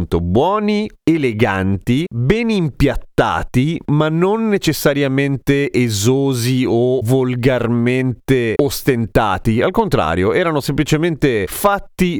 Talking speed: 80 wpm